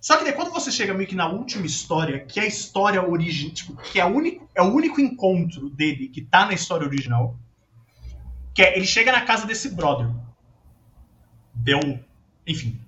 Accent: Brazilian